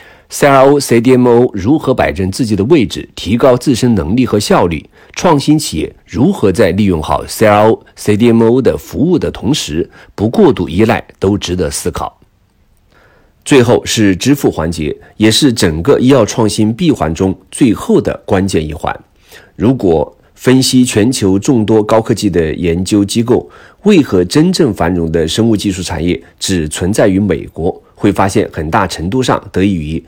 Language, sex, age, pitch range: Chinese, male, 50-69, 90-115 Hz